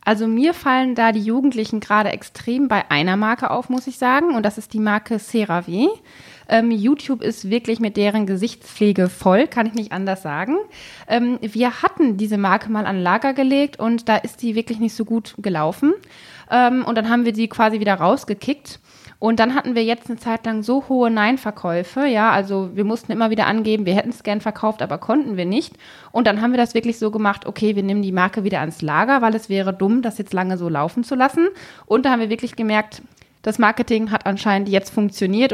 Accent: German